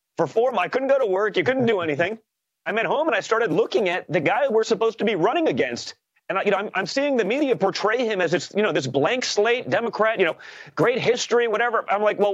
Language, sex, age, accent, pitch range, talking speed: English, male, 30-49, American, 180-250 Hz, 270 wpm